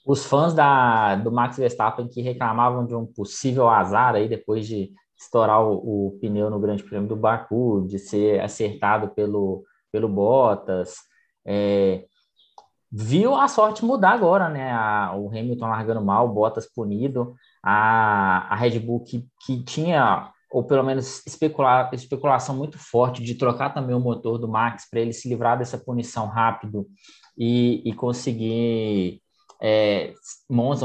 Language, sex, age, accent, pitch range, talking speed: Portuguese, male, 20-39, Brazilian, 110-130 Hz, 150 wpm